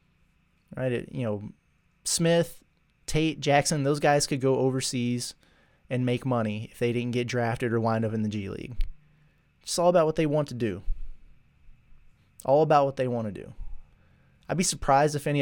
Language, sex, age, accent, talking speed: English, male, 20-39, American, 180 wpm